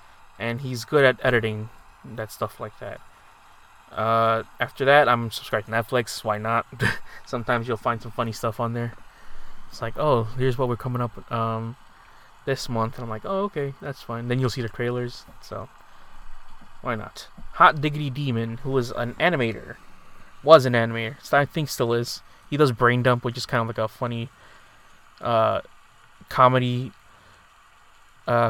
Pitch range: 115-130 Hz